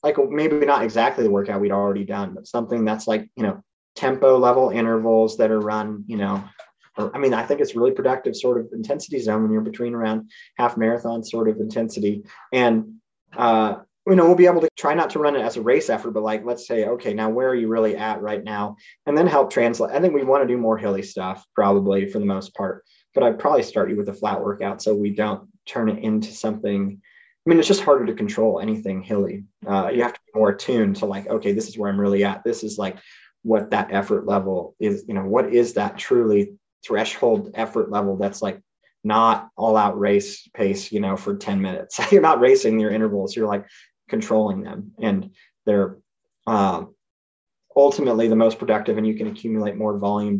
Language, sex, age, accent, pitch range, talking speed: English, male, 30-49, American, 105-140 Hz, 220 wpm